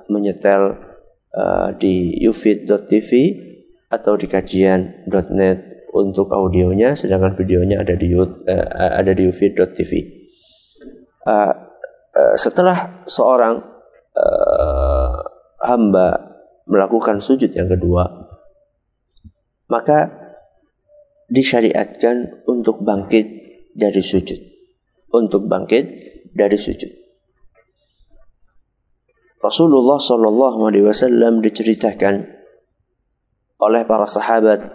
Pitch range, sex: 100-125 Hz, male